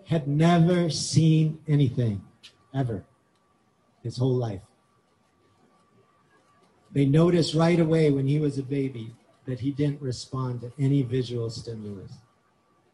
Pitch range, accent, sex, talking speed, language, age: 140-200 Hz, American, male, 115 wpm, English, 40-59